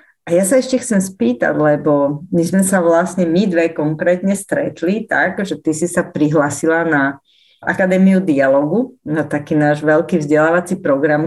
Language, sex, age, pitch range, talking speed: Slovak, female, 30-49, 160-195 Hz, 155 wpm